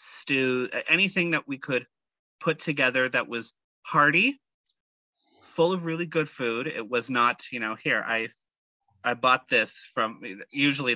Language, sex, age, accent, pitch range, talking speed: English, male, 30-49, American, 125-160 Hz, 150 wpm